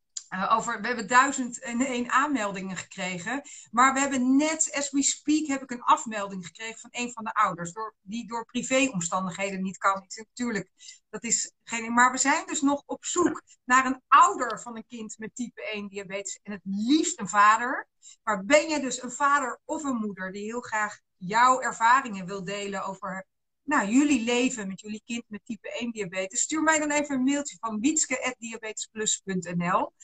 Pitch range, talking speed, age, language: 195-260 Hz, 170 wpm, 40-59, Dutch